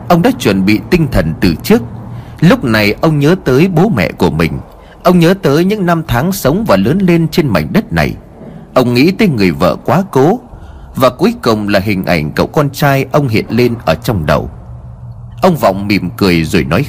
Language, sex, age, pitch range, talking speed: Vietnamese, male, 30-49, 105-170 Hz, 210 wpm